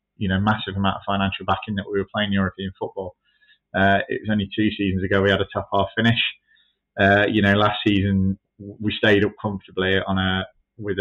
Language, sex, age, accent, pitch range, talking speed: English, male, 20-39, British, 95-100 Hz, 215 wpm